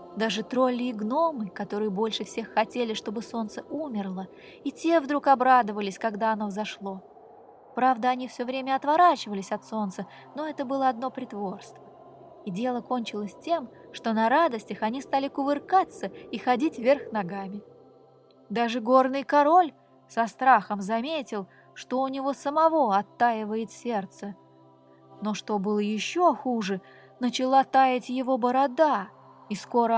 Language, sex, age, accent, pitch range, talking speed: Russian, female, 20-39, native, 210-285 Hz, 135 wpm